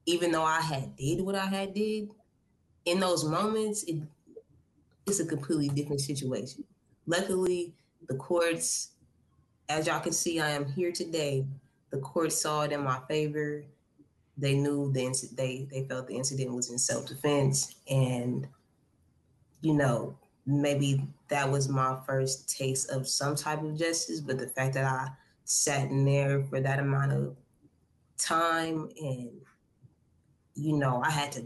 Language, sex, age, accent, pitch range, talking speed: English, female, 20-39, American, 130-150 Hz, 155 wpm